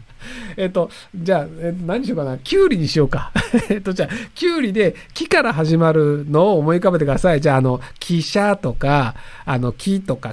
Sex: male